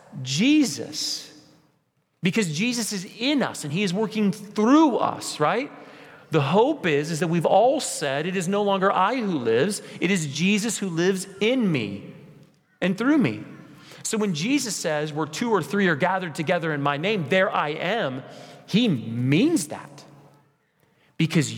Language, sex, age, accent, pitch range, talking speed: English, male, 40-59, American, 145-200 Hz, 165 wpm